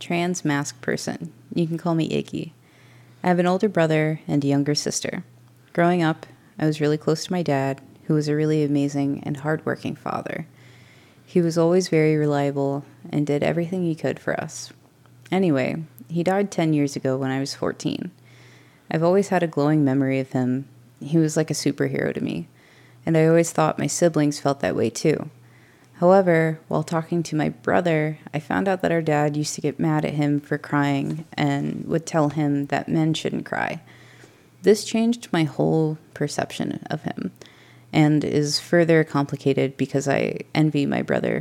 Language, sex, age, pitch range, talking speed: English, female, 20-39, 140-160 Hz, 180 wpm